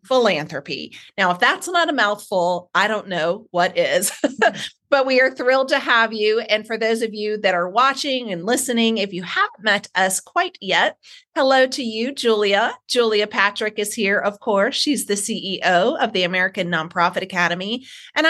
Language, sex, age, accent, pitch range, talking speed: English, female, 30-49, American, 185-250 Hz, 185 wpm